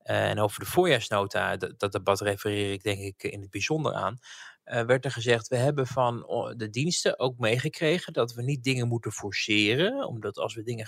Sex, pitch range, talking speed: male, 110-135 Hz, 190 wpm